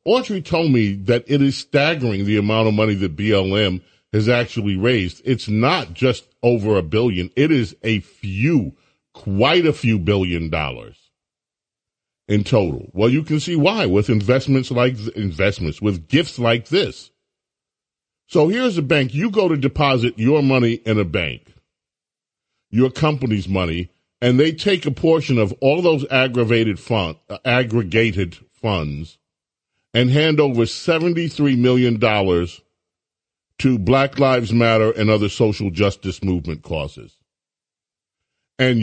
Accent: American